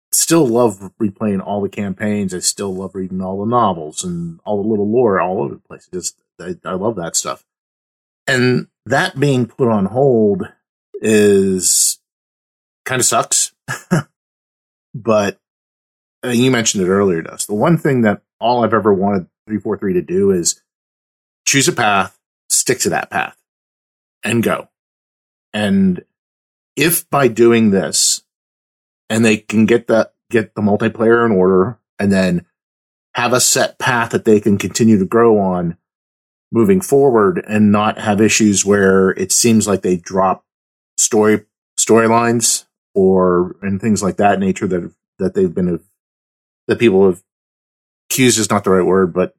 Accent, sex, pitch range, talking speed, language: American, male, 95-120 Hz, 160 wpm, English